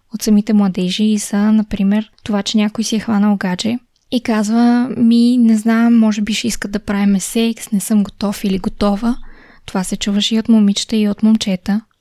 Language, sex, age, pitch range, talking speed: Bulgarian, female, 20-39, 205-235 Hz, 195 wpm